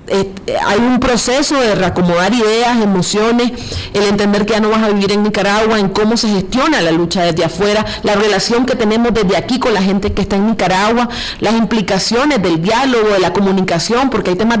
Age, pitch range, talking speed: 40-59, 195-235 Hz, 200 wpm